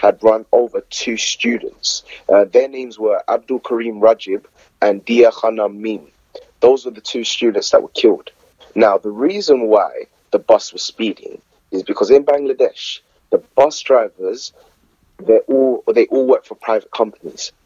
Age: 30-49